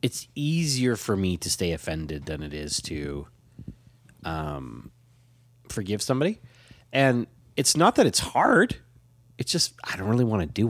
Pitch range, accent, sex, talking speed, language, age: 100-125 Hz, American, male, 155 wpm, English, 30-49